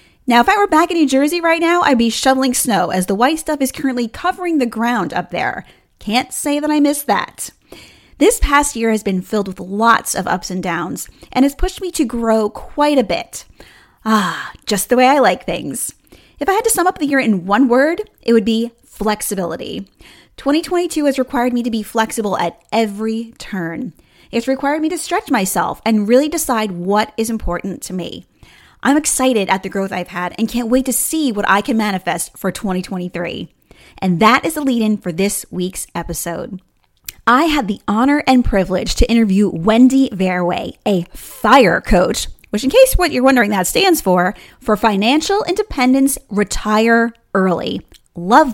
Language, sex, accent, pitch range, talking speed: English, female, American, 195-275 Hz, 190 wpm